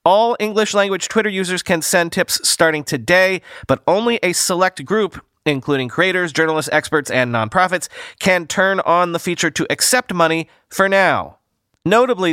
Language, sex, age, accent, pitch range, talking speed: English, male, 30-49, American, 125-190 Hz, 155 wpm